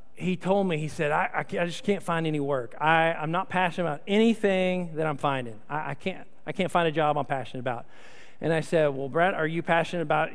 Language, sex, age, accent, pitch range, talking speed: English, male, 40-59, American, 170-220 Hz, 245 wpm